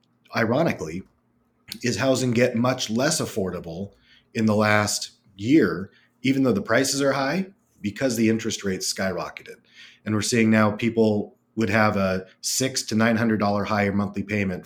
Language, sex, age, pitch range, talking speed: English, male, 30-49, 100-120 Hz, 145 wpm